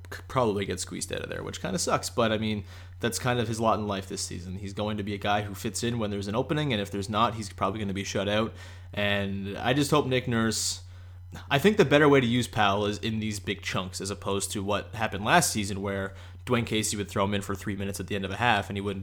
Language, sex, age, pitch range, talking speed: English, male, 20-39, 100-125 Hz, 290 wpm